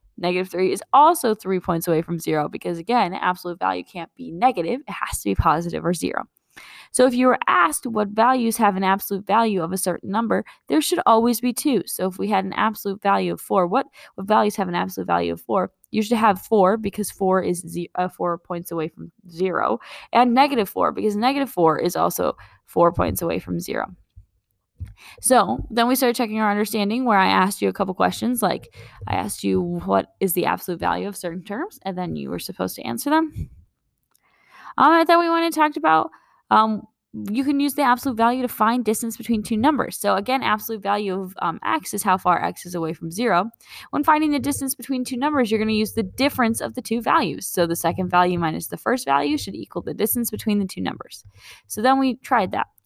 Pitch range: 175-245 Hz